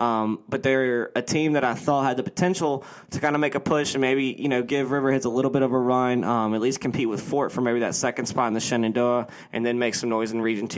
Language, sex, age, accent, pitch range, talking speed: English, male, 20-39, American, 115-135 Hz, 280 wpm